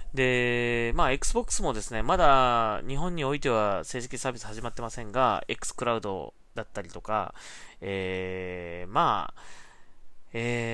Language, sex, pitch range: Japanese, male, 95-130 Hz